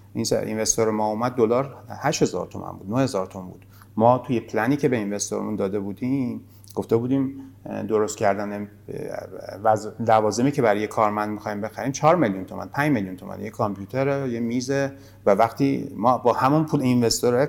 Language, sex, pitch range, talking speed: Persian, male, 105-135 Hz, 165 wpm